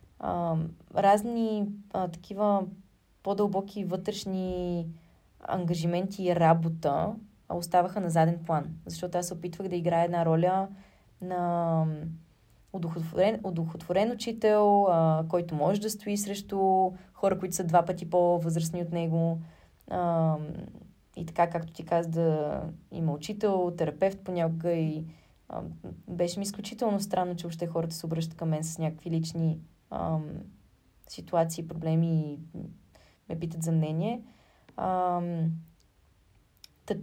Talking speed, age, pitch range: 120 wpm, 20-39, 165-195 Hz